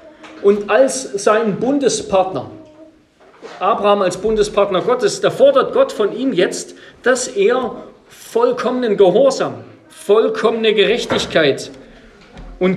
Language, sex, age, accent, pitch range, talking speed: German, male, 40-59, German, 180-230 Hz, 100 wpm